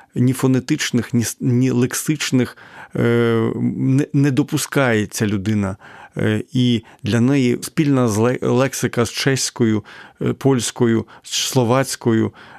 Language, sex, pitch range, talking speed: Ukrainian, male, 115-135 Hz, 80 wpm